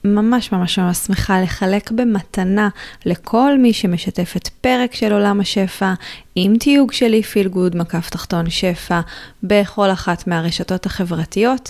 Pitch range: 180-225 Hz